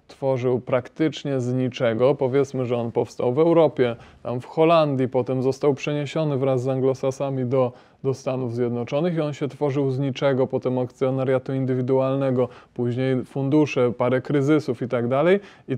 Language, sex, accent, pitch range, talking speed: Polish, male, native, 130-160 Hz, 150 wpm